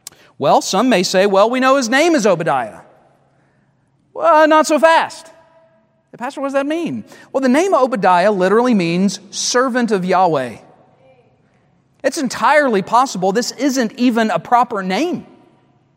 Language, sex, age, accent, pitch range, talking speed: English, male, 40-59, American, 175-240 Hz, 145 wpm